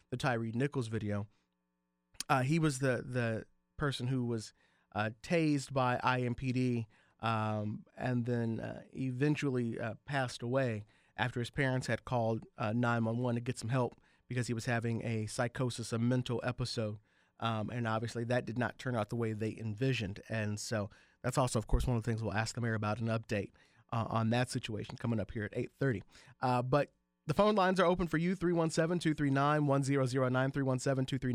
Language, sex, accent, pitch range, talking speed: English, male, American, 115-140 Hz, 175 wpm